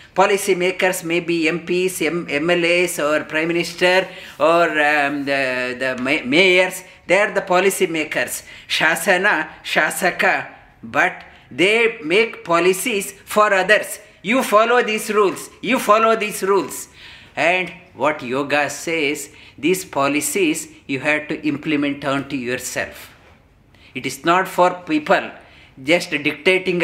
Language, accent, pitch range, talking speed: English, Indian, 140-185 Hz, 125 wpm